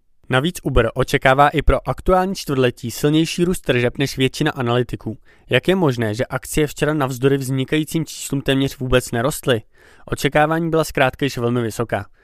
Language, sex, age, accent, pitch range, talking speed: Czech, male, 20-39, native, 120-150 Hz, 150 wpm